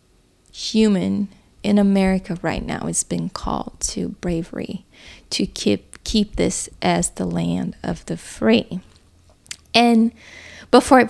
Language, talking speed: English, 120 wpm